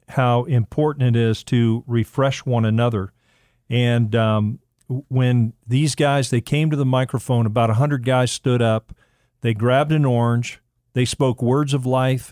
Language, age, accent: English, 50-69, American